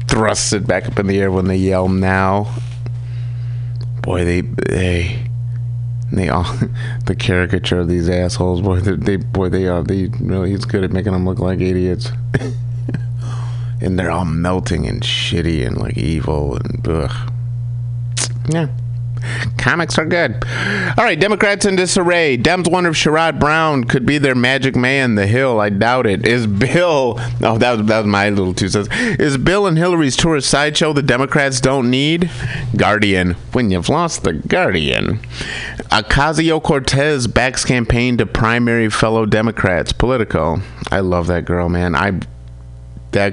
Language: English